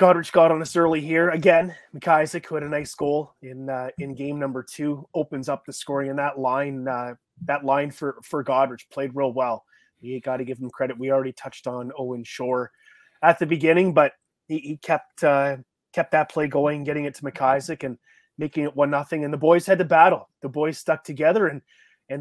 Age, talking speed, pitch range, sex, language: 30-49, 215 wpm, 135-165 Hz, male, English